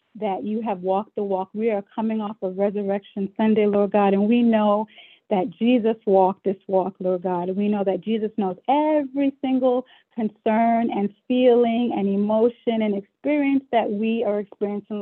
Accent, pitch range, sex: American, 195-230 Hz, female